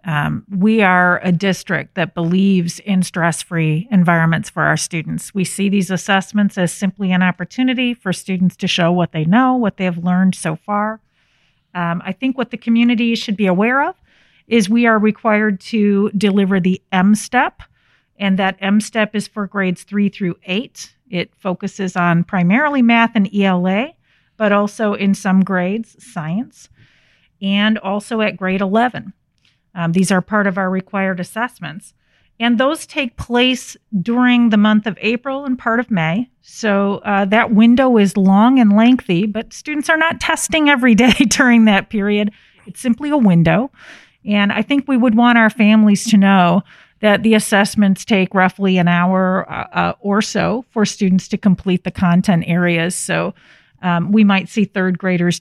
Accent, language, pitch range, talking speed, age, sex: American, English, 180-220 Hz, 170 wpm, 40-59, female